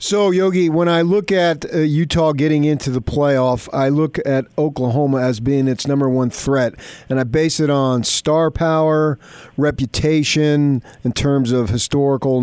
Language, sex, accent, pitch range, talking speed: English, male, American, 110-135 Hz, 165 wpm